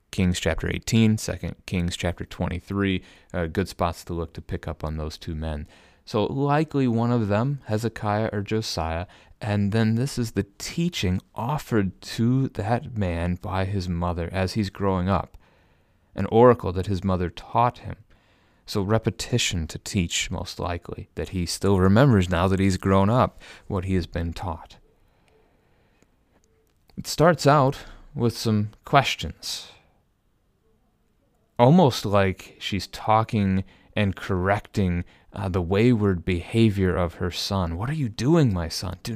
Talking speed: 145 wpm